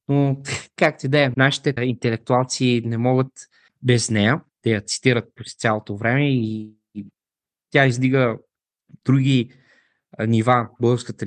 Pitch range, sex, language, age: 115-145 Hz, male, Bulgarian, 20-39